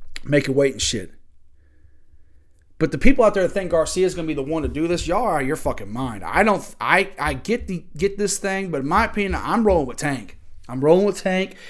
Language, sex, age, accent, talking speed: English, male, 30-49, American, 245 wpm